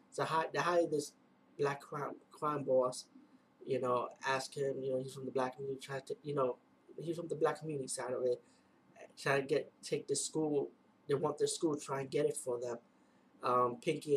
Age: 20-39